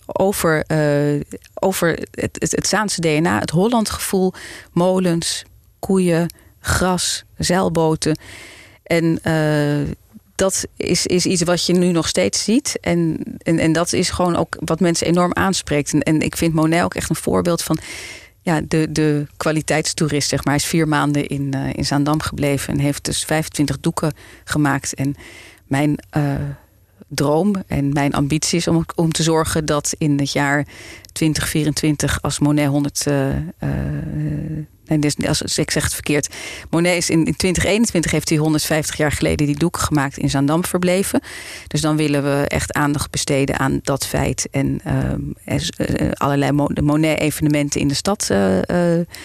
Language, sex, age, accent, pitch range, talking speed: Dutch, female, 40-59, Dutch, 145-170 Hz, 160 wpm